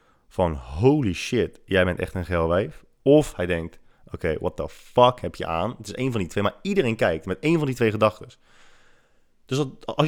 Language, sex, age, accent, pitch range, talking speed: Dutch, male, 20-39, Dutch, 90-130 Hz, 225 wpm